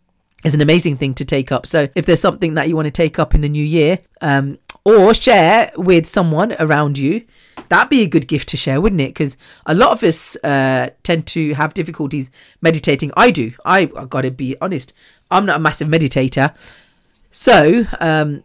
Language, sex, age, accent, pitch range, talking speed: English, female, 40-59, British, 145-205 Hz, 200 wpm